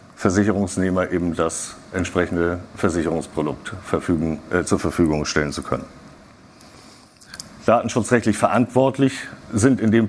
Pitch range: 85-105 Hz